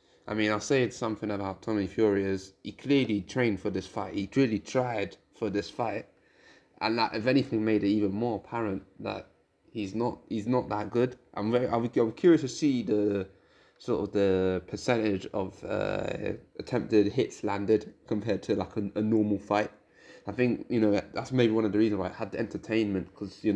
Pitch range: 100-120 Hz